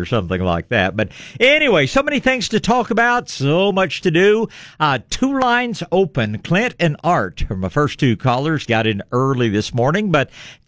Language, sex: English, male